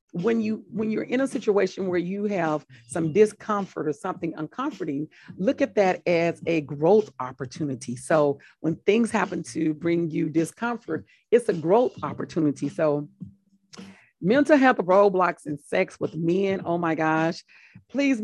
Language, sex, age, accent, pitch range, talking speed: English, female, 40-59, American, 155-205 Hz, 150 wpm